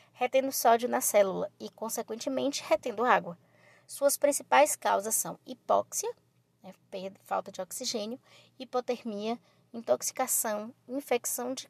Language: Portuguese